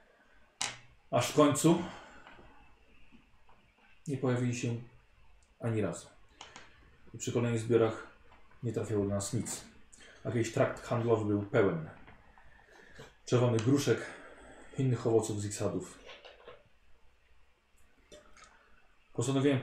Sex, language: male, Polish